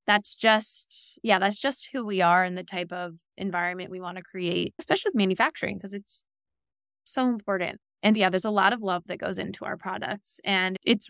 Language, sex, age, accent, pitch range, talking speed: English, female, 20-39, American, 185-220 Hz, 205 wpm